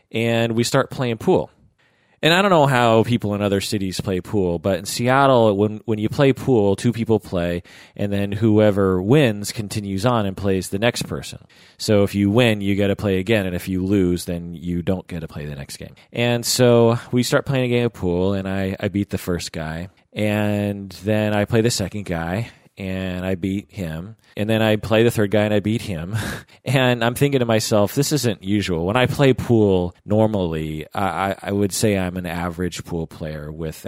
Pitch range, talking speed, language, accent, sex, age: 90-115 Hz, 215 wpm, English, American, male, 30-49